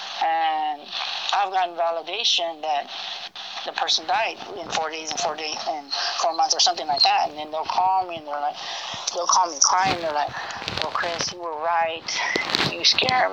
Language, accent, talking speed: English, American, 190 wpm